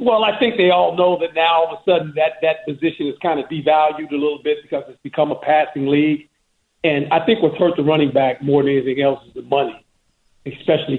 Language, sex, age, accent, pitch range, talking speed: English, male, 50-69, American, 140-175 Hz, 240 wpm